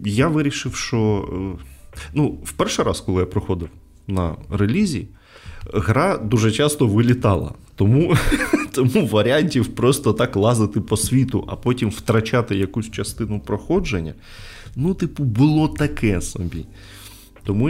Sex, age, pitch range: male, 20-39, 95-120 Hz